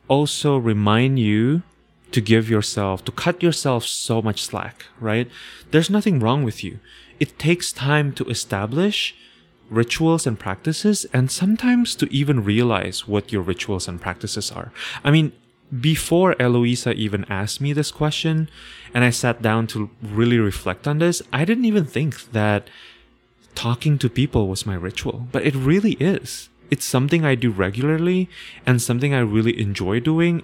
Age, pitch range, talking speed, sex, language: 20-39, 105-155 Hz, 160 wpm, male, English